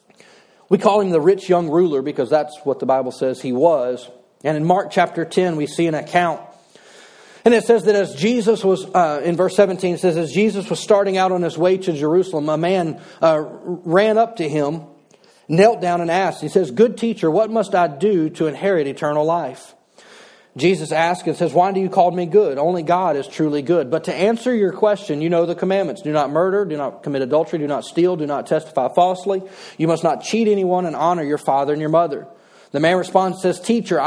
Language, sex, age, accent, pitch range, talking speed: English, male, 40-59, American, 155-190 Hz, 220 wpm